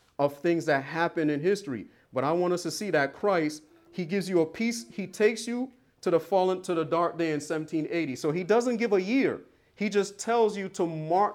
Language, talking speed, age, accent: English, 225 wpm, 40-59, American